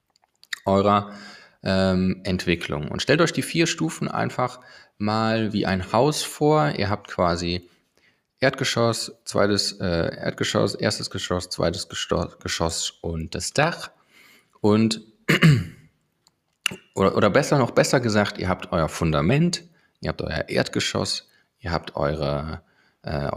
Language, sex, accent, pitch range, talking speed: German, male, German, 95-130 Hz, 125 wpm